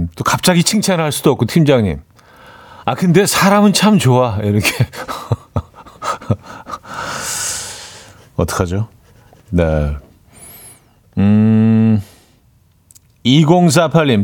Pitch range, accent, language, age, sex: 110-165 Hz, native, Korean, 40-59, male